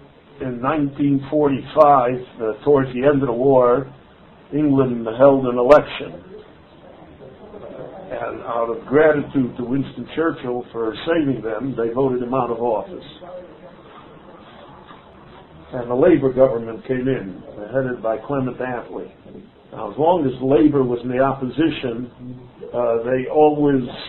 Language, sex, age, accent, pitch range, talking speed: English, male, 60-79, American, 115-140 Hz, 125 wpm